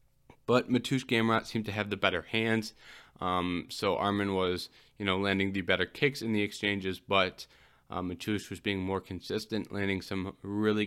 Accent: American